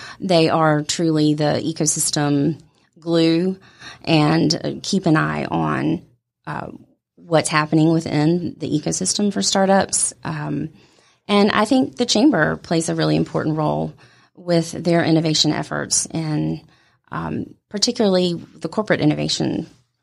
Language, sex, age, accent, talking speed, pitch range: English, female, 30-49, American, 125 wpm, 150-175 Hz